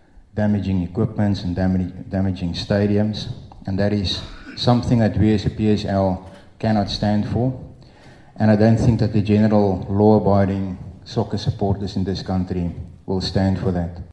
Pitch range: 95-110 Hz